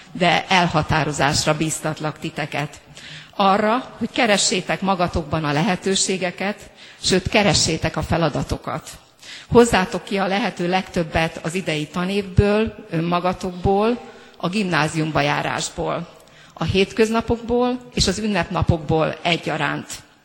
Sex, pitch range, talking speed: female, 165-205 Hz, 95 wpm